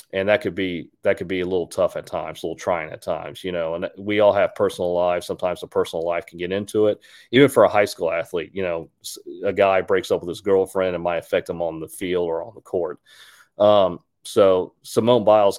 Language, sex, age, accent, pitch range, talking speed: English, male, 40-59, American, 90-100 Hz, 245 wpm